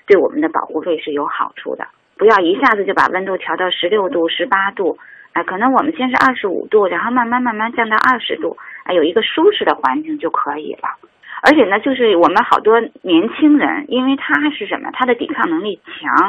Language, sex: Chinese, female